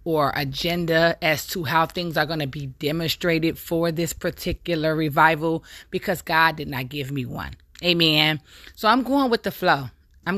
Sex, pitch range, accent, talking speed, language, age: female, 145-175 Hz, American, 175 wpm, English, 20-39